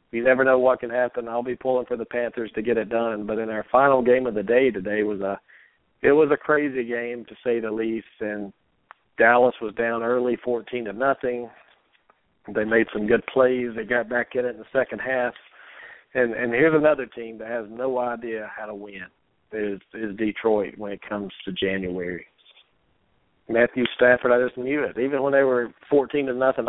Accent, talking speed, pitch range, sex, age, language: American, 205 wpm, 110-125 Hz, male, 50-69, English